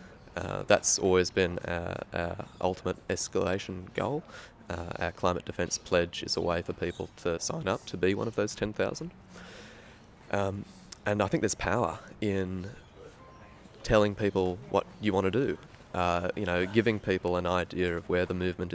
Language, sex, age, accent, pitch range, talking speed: English, male, 20-39, Australian, 90-105 Hz, 170 wpm